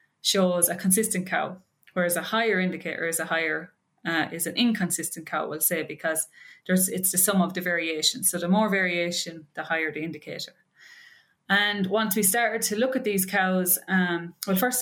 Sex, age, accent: female, 20-39, Irish